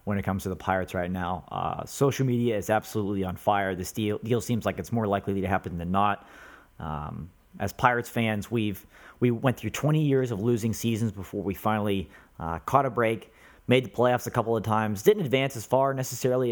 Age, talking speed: 30-49, 220 wpm